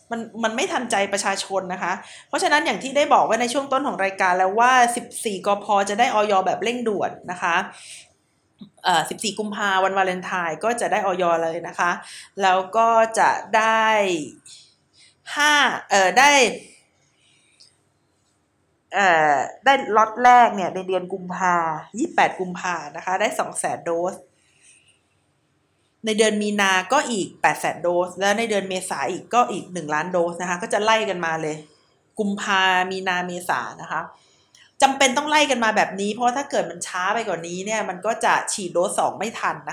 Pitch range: 185-230 Hz